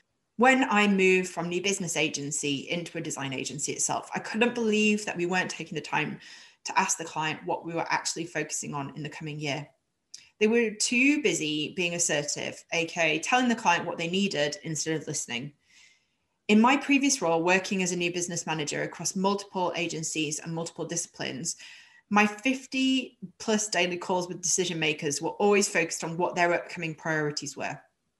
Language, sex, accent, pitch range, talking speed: English, female, British, 165-215 Hz, 180 wpm